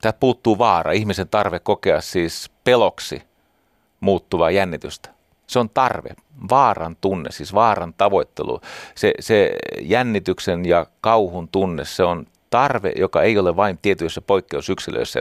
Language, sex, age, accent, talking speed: Finnish, male, 30-49, native, 130 wpm